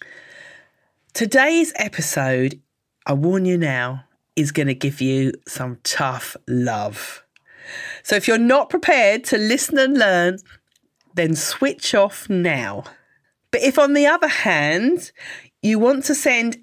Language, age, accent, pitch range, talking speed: English, 40-59, British, 150-235 Hz, 135 wpm